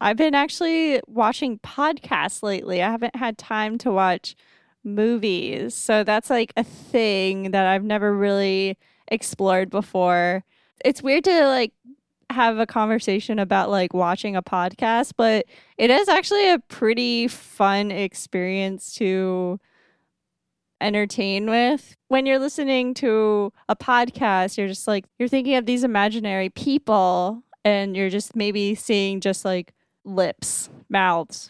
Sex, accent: female, American